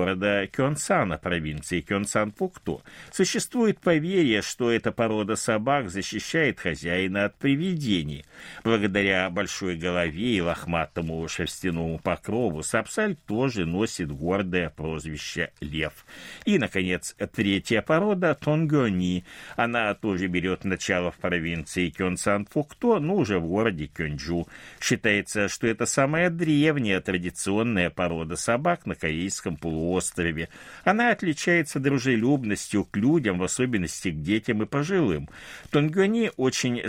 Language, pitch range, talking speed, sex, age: Russian, 85-130 Hz, 110 wpm, male, 60-79